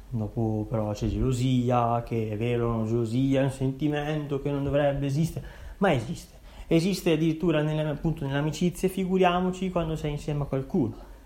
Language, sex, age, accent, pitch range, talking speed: Italian, male, 20-39, native, 125-155 Hz, 150 wpm